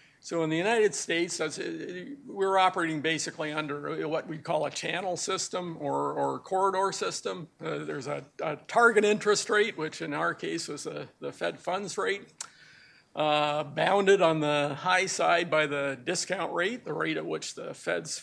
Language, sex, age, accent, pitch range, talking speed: English, male, 50-69, American, 155-200 Hz, 170 wpm